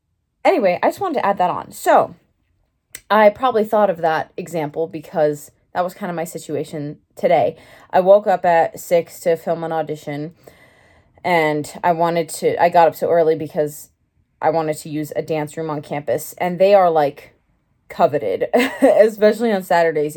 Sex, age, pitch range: female, 20-39, 150-185 Hz